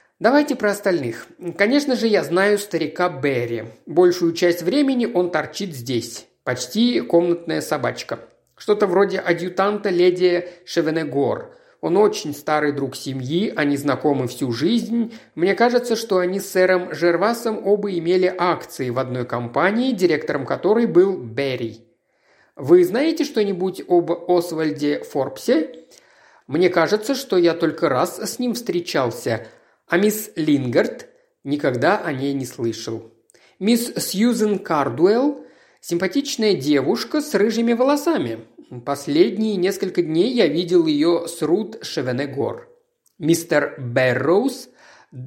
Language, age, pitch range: Russian, 50-69, 145-225 Hz